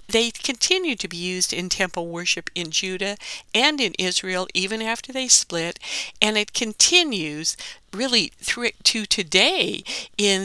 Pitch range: 175-235 Hz